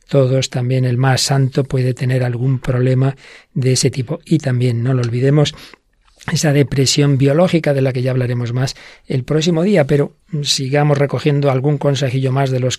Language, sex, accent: Spanish, male, Spanish